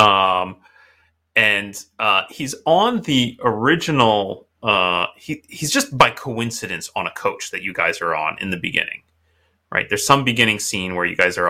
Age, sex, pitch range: 30-49, male, 85-120 Hz